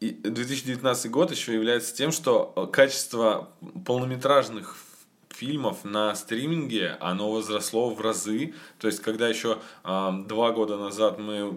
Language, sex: Russian, male